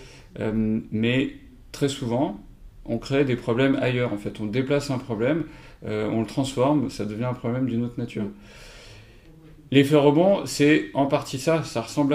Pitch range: 115-145 Hz